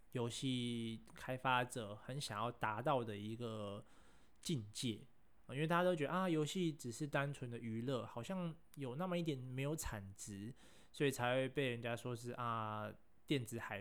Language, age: Chinese, 20-39